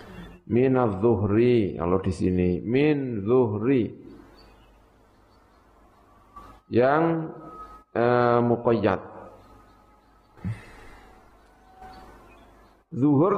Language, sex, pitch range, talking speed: Indonesian, male, 100-135 Hz, 45 wpm